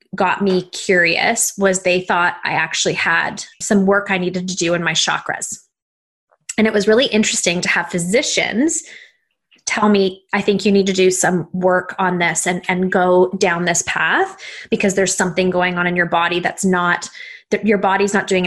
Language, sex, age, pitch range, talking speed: English, female, 20-39, 180-200 Hz, 190 wpm